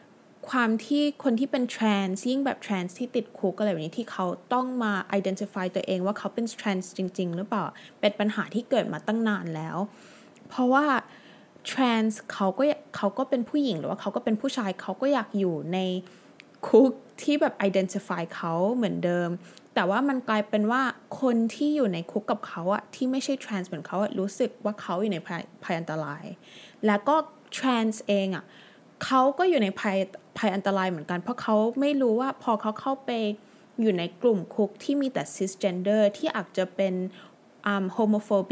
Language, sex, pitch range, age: Thai, female, 190-250 Hz, 20-39